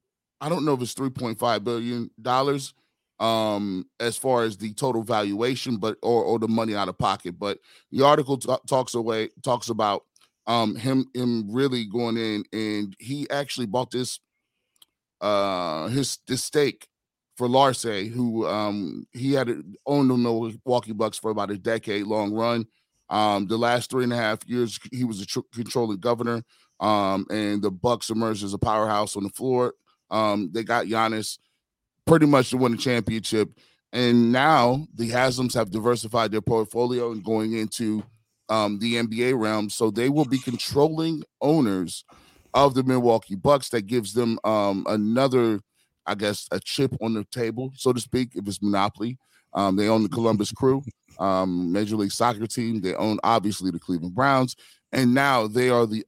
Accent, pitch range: American, 105-125 Hz